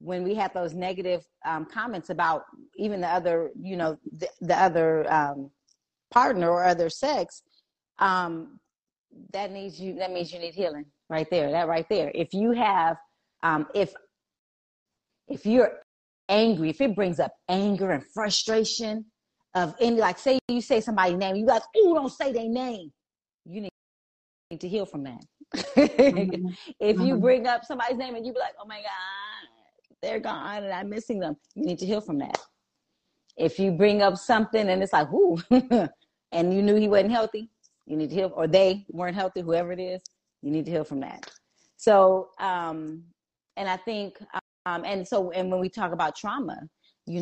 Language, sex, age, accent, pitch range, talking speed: English, female, 30-49, American, 165-215 Hz, 185 wpm